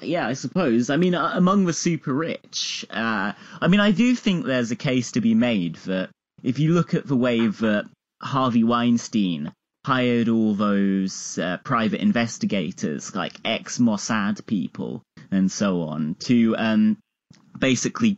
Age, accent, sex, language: 30-49, British, male, English